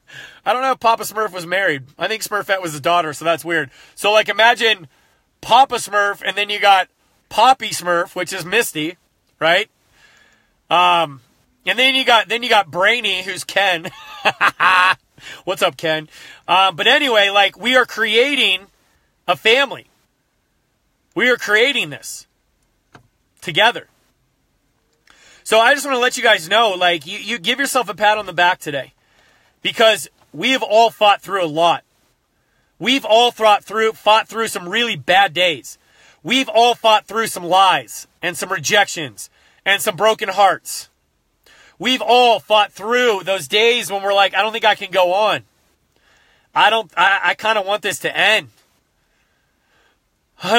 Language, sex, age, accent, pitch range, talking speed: English, male, 30-49, American, 175-225 Hz, 160 wpm